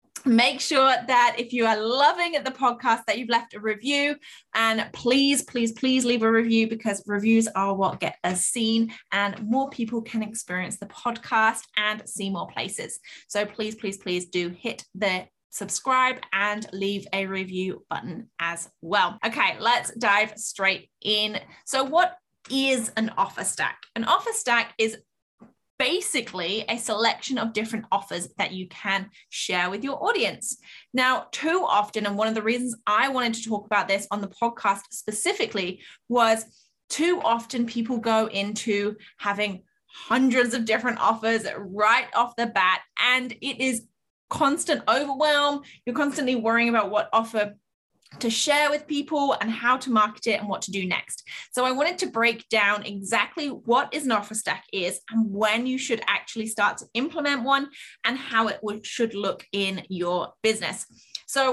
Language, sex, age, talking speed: English, female, 20-39, 165 wpm